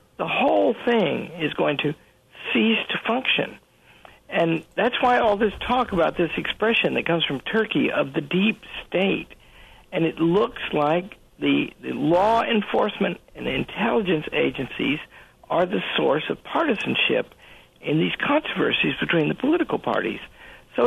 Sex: male